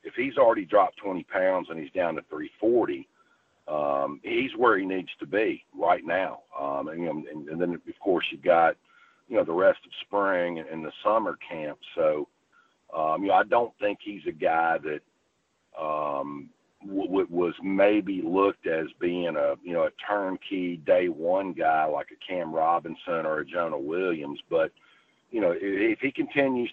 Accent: American